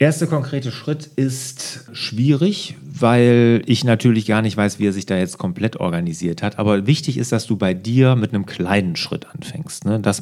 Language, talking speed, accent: German, 195 wpm, German